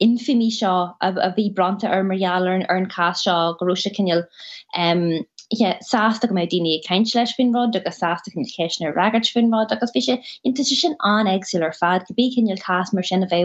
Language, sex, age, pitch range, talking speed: English, female, 20-39, 180-225 Hz, 165 wpm